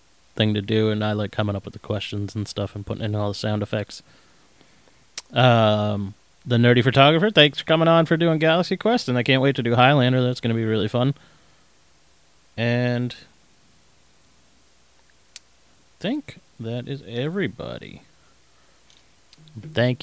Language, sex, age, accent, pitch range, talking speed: English, male, 30-49, American, 100-125 Hz, 155 wpm